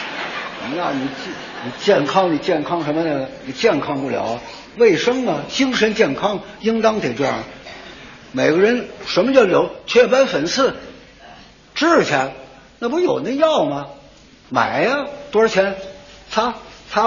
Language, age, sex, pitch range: Chinese, 60-79, male, 165-235 Hz